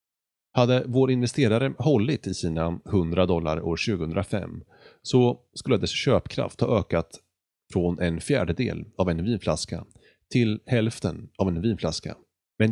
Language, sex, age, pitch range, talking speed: Swedish, male, 30-49, 90-120 Hz, 130 wpm